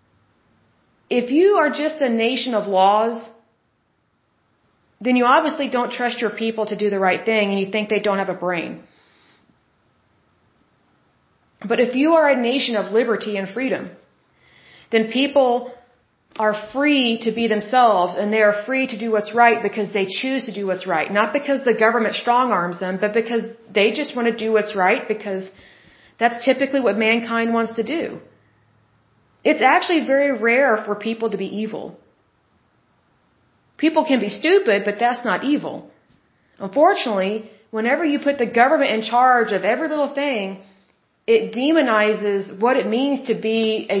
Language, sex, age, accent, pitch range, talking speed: Bengali, female, 30-49, American, 210-255 Hz, 165 wpm